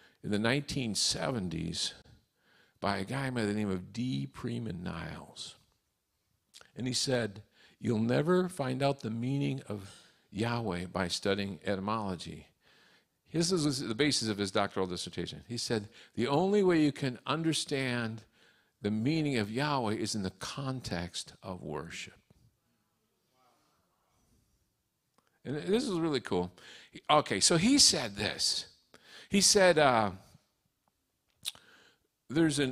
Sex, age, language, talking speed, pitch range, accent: male, 50-69, English, 125 wpm, 110-155 Hz, American